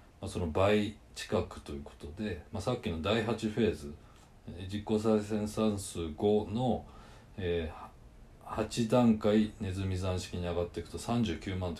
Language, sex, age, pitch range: Japanese, male, 40-59, 85-110 Hz